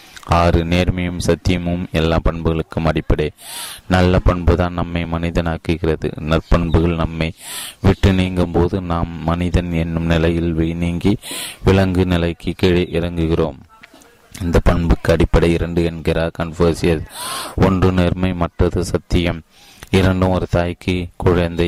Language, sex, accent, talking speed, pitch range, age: Tamil, male, native, 100 wpm, 80-90 Hz, 30-49